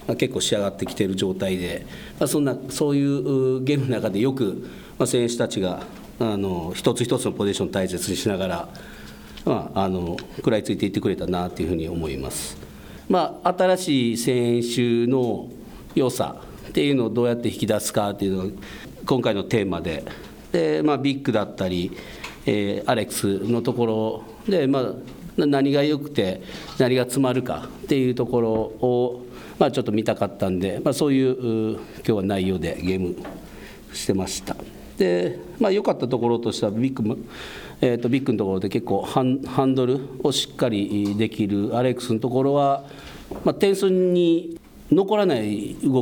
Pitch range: 100-135 Hz